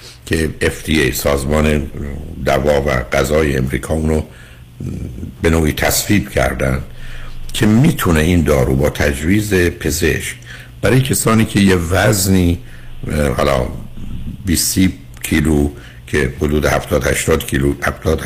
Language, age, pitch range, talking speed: Persian, 60-79, 70-90 Hz, 100 wpm